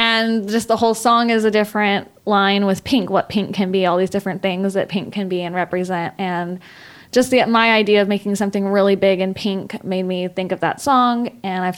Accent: American